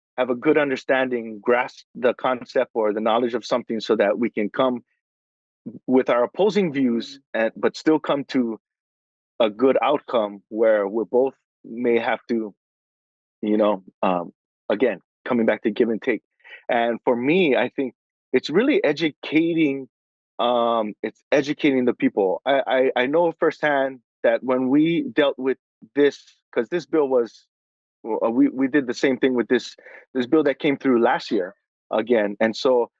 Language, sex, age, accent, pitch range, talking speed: English, male, 30-49, American, 110-135 Hz, 165 wpm